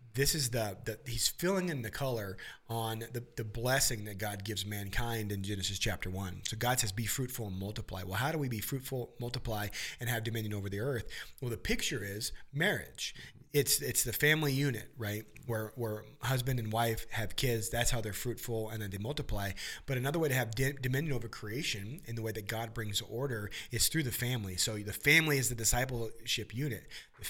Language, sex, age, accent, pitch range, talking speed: English, male, 30-49, American, 110-135 Hz, 210 wpm